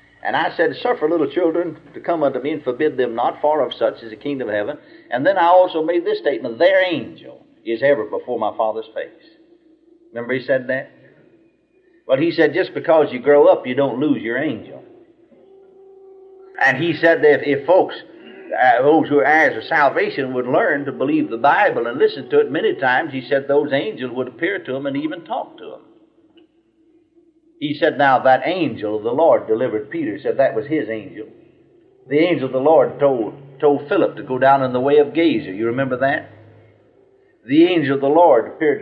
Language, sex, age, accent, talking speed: English, male, 50-69, American, 205 wpm